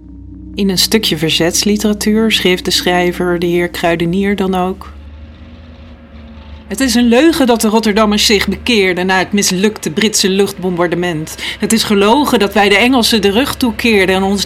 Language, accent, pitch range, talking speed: Dutch, Dutch, 160-215 Hz, 160 wpm